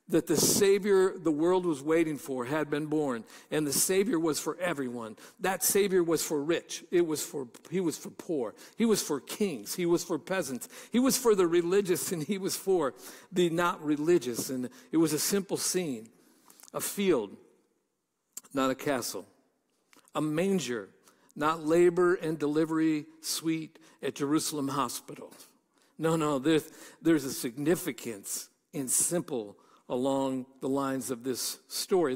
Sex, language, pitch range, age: male, English, 135-185 Hz, 60-79